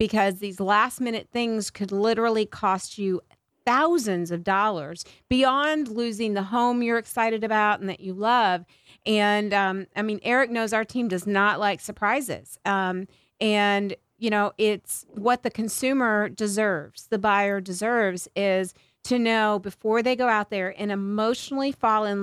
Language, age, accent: English, 40-59, American